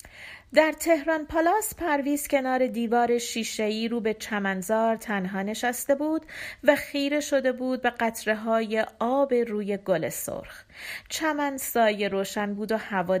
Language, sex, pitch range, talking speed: Persian, female, 205-290 Hz, 130 wpm